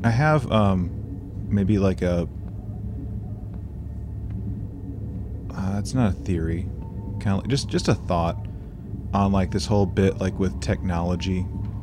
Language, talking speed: English, 125 wpm